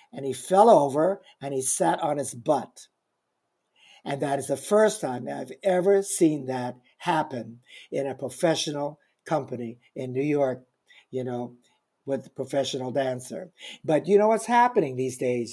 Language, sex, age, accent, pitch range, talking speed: English, male, 60-79, American, 135-195 Hz, 160 wpm